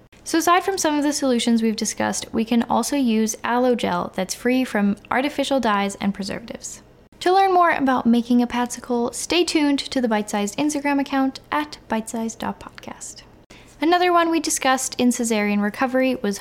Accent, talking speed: American, 170 wpm